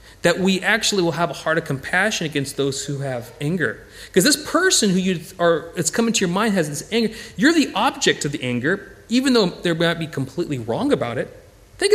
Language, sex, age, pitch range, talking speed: English, male, 30-49, 125-190 Hz, 215 wpm